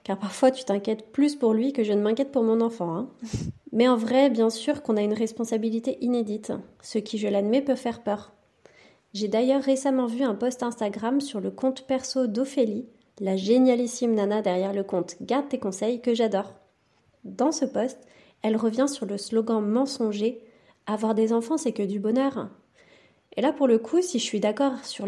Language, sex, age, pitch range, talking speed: French, female, 30-49, 215-255 Hz, 195 wpm